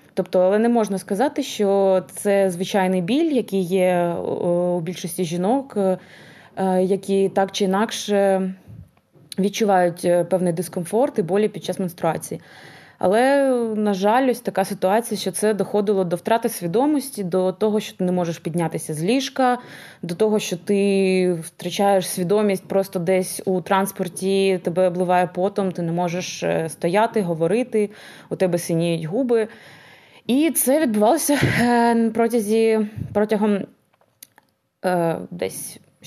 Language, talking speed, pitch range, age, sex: Ukrainian, 125 wpm, 185-225 Hz, 20-39, female